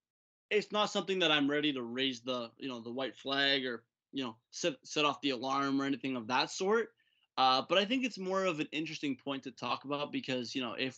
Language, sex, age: English, male, 20-39